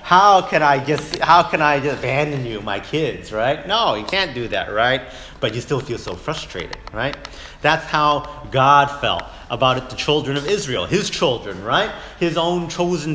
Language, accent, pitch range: English, American, 120-155 Hz